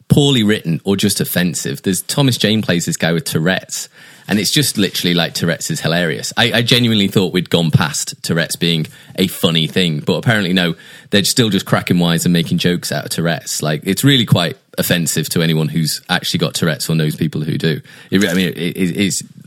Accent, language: British, English